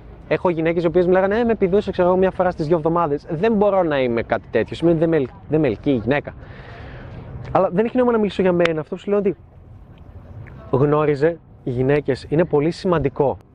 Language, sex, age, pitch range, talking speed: Greek, male, 20-39, 125-180 Hz, 210 wpm